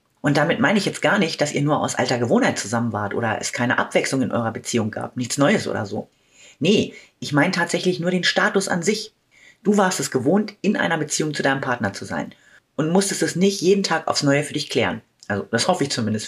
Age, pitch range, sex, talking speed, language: 30-49, 125-170 Hz, female, 235 wpm, German